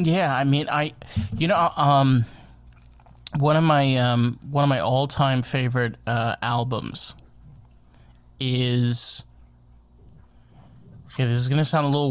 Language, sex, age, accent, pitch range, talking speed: English, male, 20-39, American, 120-155 Hz, 135 wpm